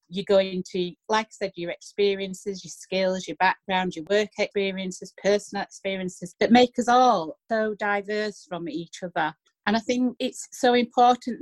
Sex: female